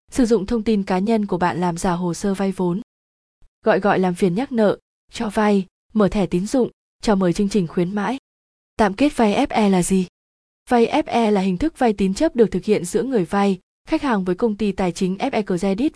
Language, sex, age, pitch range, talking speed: Vietnamese, female, 20-39, 190-235 Hz, 230 wpm